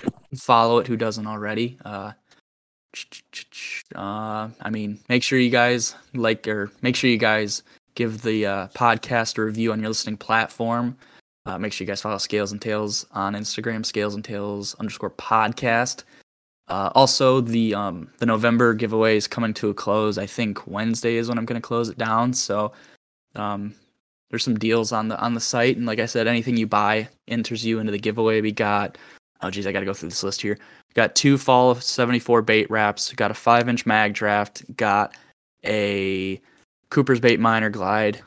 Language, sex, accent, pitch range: English, male, American, 105-115 Hz